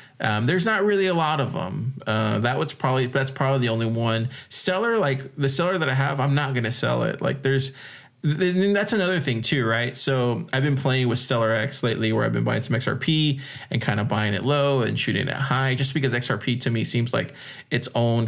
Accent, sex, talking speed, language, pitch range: American, male, 230 wpm, English, 125-150 Hz